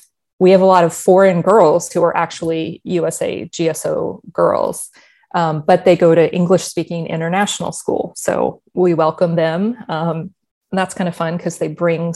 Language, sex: English, female